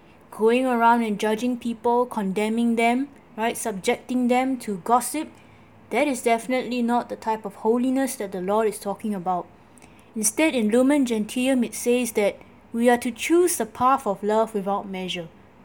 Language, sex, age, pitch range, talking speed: English, female, 20-39, 215-260 Hz, 165 wpm